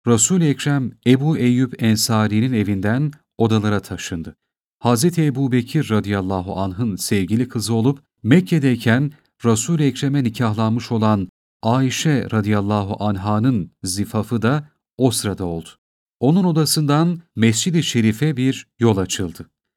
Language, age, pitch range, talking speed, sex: Turkish, 40-59, 105-145 Hz, 110 wpm, male